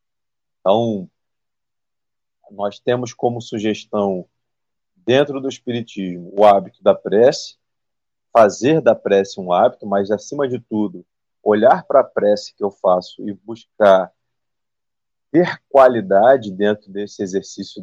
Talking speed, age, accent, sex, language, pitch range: 120 wpm, 40-59, Brazilian, male, Portuguese, 105-135 Hz